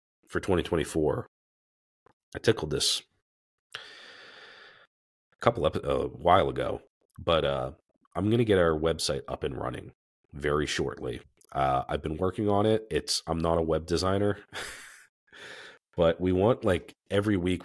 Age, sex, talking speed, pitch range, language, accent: 40-59, male, 145 wpm, 75-100 Hz, English, American